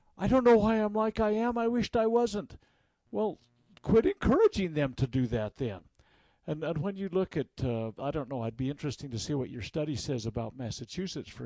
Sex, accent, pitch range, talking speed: male, American, 120-155 Hz, 220 wpm